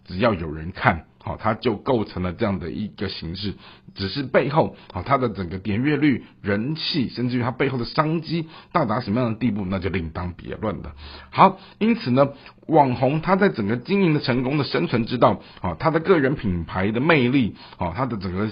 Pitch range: 95-140 Hz